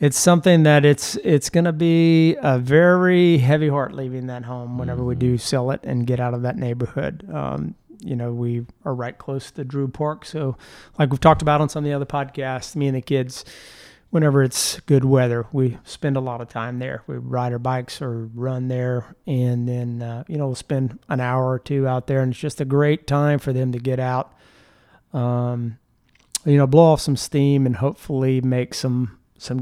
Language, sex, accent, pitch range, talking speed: English, male, American, 125-145 Hz, 215 wpm